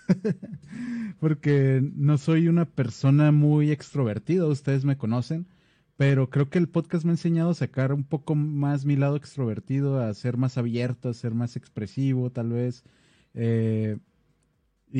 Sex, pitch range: male, 125-145 Hz